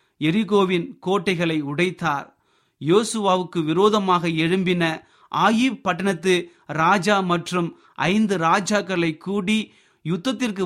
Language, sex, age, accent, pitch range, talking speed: Tamil, male, 30-49, native, 160-195 Hz, 80 wpm